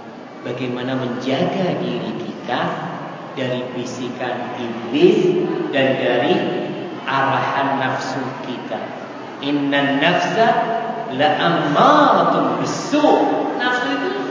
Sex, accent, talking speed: male, Indonesian, 75 wpm